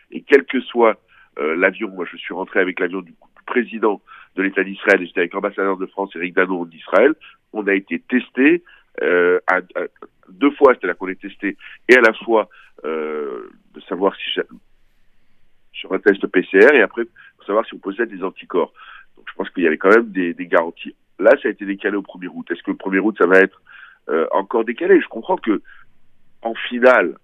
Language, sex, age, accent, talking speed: Italian, male, 60-79, French, 215 wpm